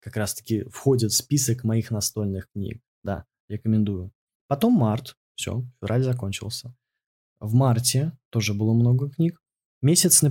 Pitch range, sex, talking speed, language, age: 115-135 Hz, male, 135 wpm, Russian, 20-39